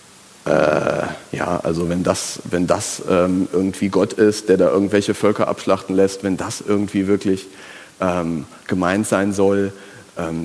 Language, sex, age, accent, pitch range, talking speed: German, male, 40-59, German, 100-125 Hz, 150 wpm